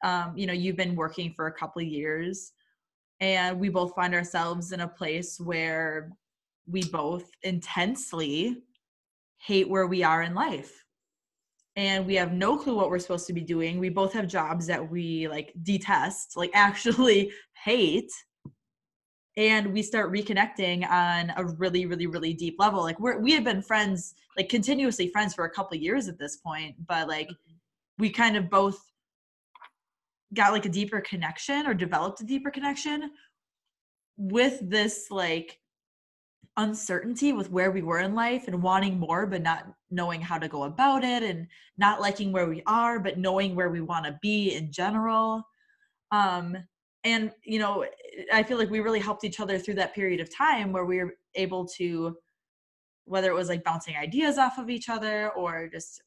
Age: 20-39